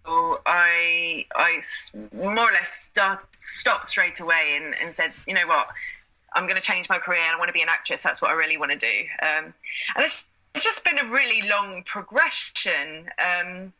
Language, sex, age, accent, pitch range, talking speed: English, female, 20-39, British, 170-230 Hz, 200 wpm